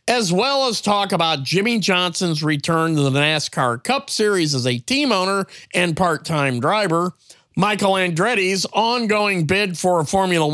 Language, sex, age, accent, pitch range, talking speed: English, male, 50-69, American, 160-225 Hz, 155 wpm